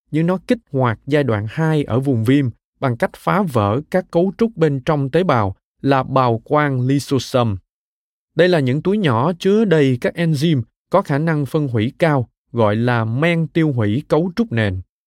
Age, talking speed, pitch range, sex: 20-39, 190 wpm, 120-165 Hz, male